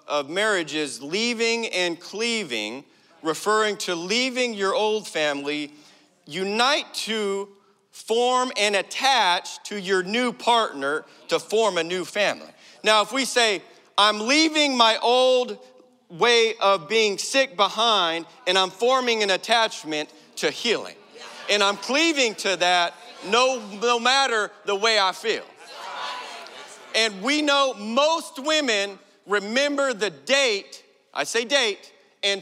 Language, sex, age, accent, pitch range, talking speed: English, male, 40-59, American, 175-235 Hz, 130 wpm